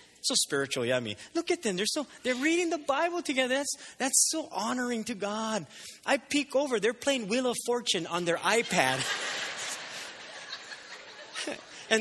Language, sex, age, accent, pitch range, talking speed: English, male, 30-49, American, 155-255 Hz, 165 wpm